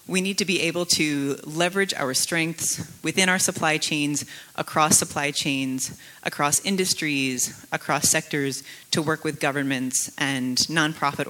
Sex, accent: female, American